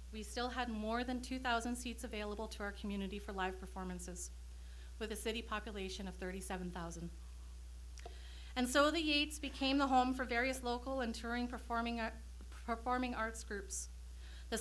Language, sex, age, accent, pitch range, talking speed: English, female, 30-49, American, 185-245 Hz, 150 wpm